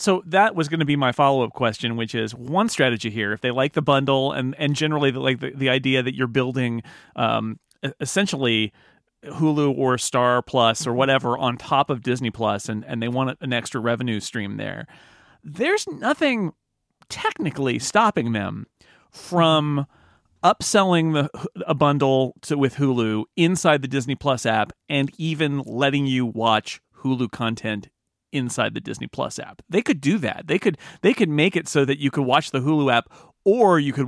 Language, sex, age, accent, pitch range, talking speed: English, male, 40-59, American, 125-160 Hz, 180 wpm